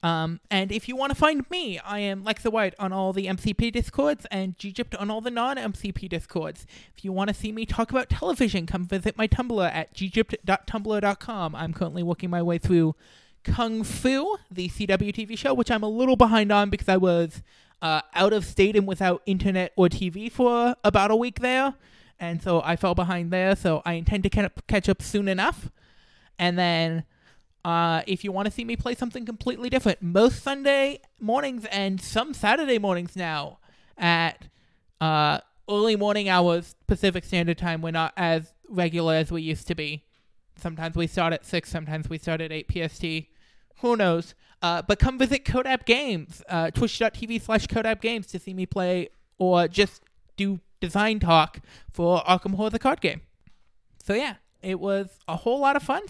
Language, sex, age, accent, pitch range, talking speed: English, male, 20-39, American, 170-225 Hz, 185 wpm